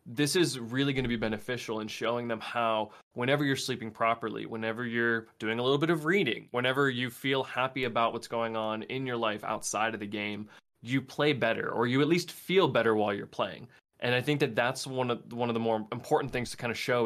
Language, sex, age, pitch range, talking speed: English, male, 20-39, 115-140 Hz, 235 wpm